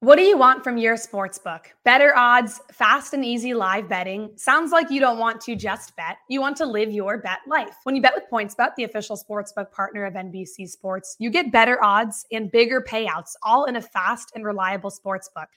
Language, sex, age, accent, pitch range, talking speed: English, female, 20-39, American, 200-245 Hz, 210 wpm